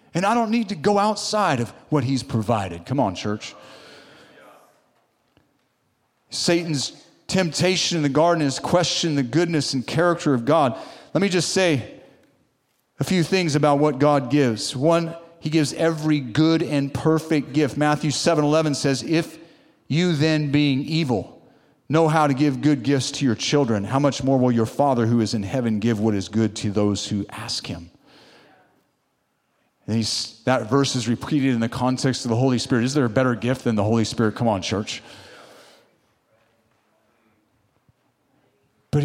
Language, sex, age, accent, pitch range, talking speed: English, male, 40-59, American, 120-160 Hz, 165 wpm